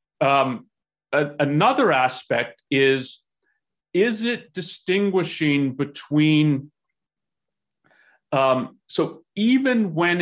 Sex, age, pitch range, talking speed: male, 40-59, 145-190 Hz, 75 wpm